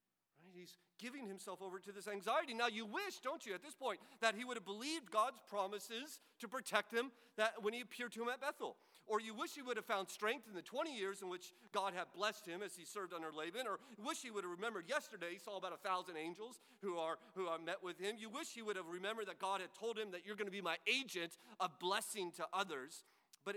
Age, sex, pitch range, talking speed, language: 40-59, male, 130-210 Hz, 255 wpm, English